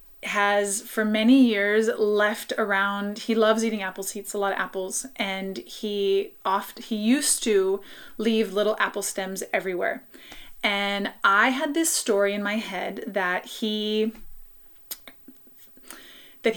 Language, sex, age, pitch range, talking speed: English, female, 20-39, 200-245 Hz, 140 wpm